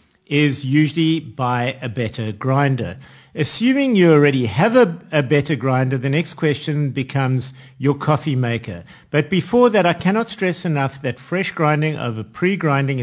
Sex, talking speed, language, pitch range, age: male, 150 wpm, English, 125-170 Hz, 50-69